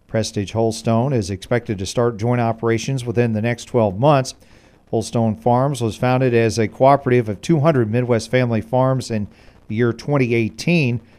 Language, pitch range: English, 110-130 Hz